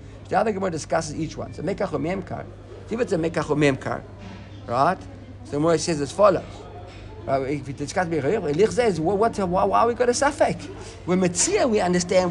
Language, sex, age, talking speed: English, male, 50-69, 170 wpm